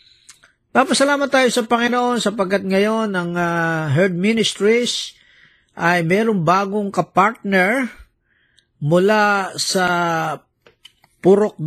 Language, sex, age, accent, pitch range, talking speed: Filipino, male, 50-69, native, 155-210 Hz, 100 wpm